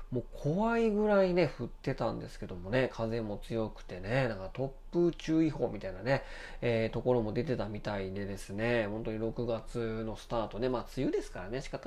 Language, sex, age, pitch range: Japanese, male, 20-39, 110-140 Hz